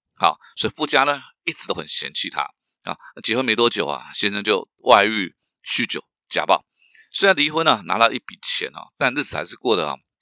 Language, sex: Chinese, male